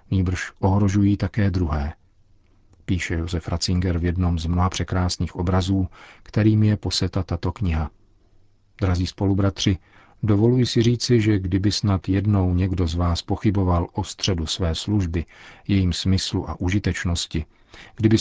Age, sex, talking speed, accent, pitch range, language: 40-59, male, 130 wpm, native, 90-100 Hz, Czech